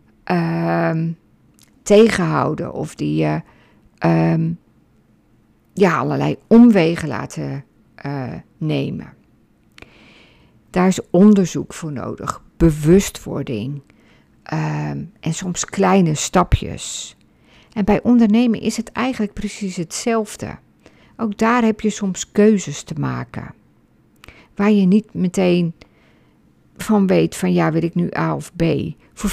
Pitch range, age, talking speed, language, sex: 155-205 Hz, 50-69, 110 wpm, Dutch, female